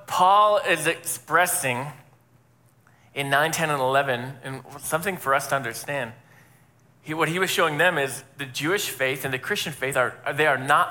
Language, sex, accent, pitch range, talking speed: English, male, American, 130-165 Hz, 175 wpm